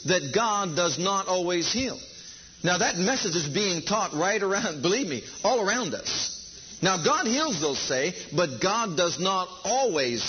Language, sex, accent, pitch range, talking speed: English, male, American, 170-215 Hz, 170 wpm